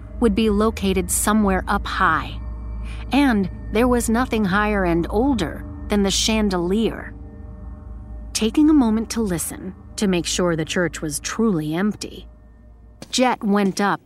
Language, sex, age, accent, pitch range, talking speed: English, female, 30-49, American, 160-210 Hz, 135 wpm